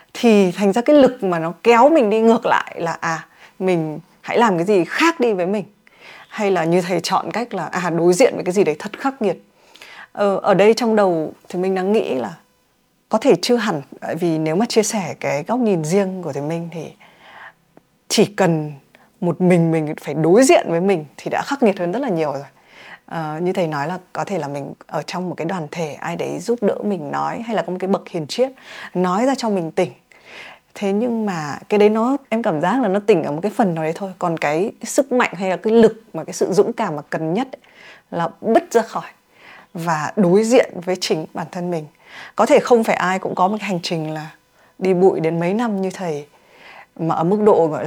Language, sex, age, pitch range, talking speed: Vietnamese, female, 20-39, 170-215 Hz, 235 wpm